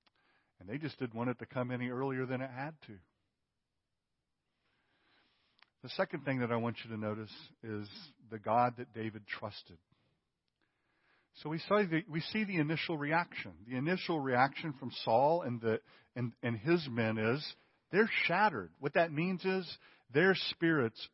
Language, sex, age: German, male, 50-69